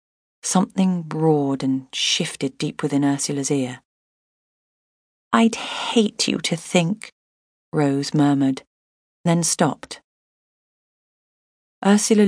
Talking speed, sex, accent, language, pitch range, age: 90 wpm, female, British, English, 145-185 Hz, 40-59